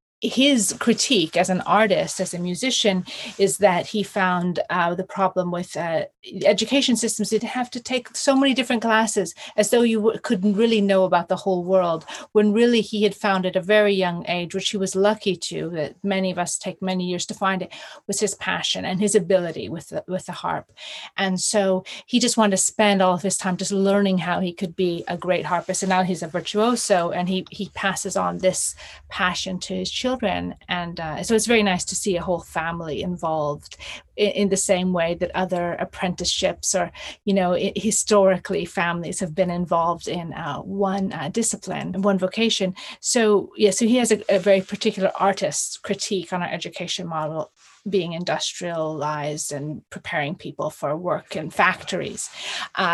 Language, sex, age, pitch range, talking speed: English, female, 30-49, 180-210 Hz, 195 wpm